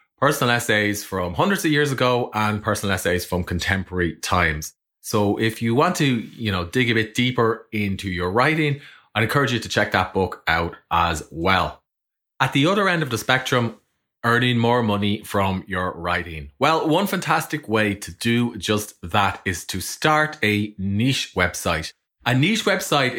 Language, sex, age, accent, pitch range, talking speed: English, male, 30-49, Irish, 95-135 Hz, 175 wpm